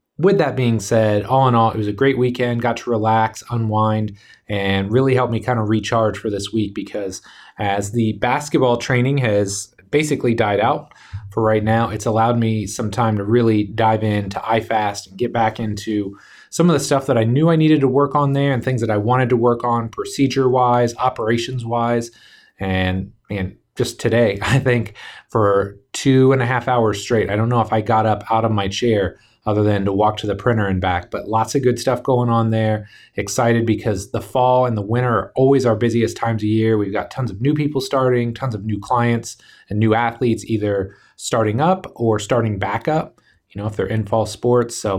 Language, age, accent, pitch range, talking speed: English, 30-49, American, 105-125 Hz, 210 wpm